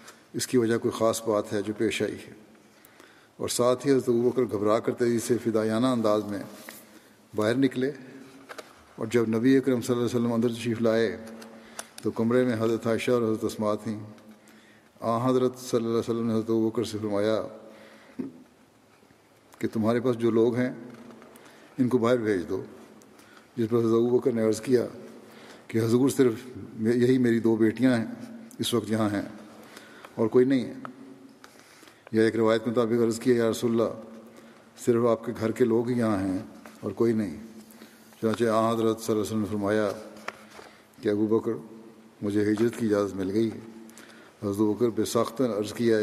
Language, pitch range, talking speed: Urdu, 110-120 Hz, 165 wpm